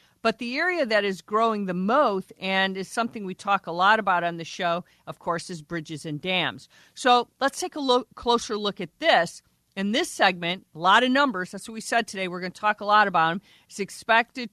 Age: 50-69